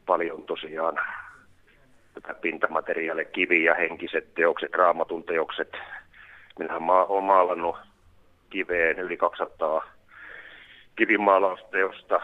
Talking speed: 70 wpm